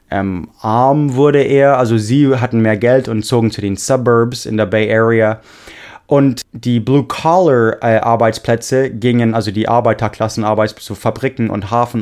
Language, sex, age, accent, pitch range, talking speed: English, male, 20-39, German, 105-130 Hz, 160 wpm